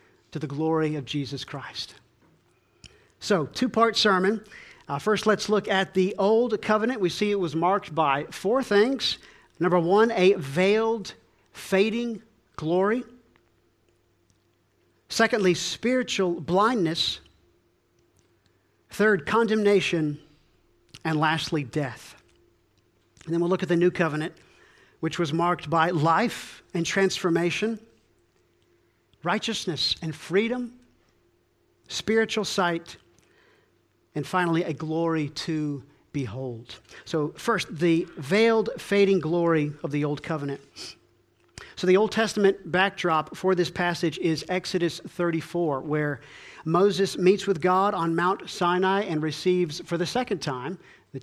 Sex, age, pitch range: male, 50-69, 150-195 Hz